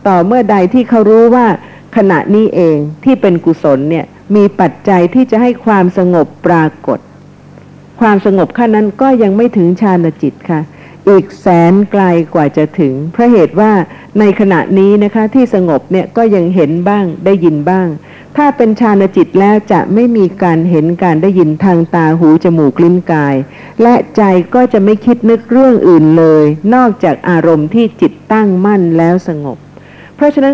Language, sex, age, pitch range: Thai, female, 50-69, 165-215 Hz